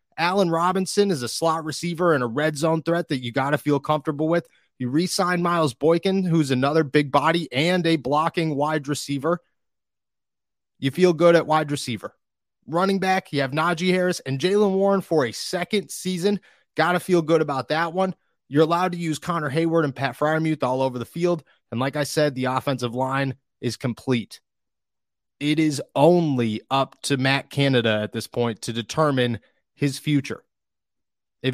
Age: 30-49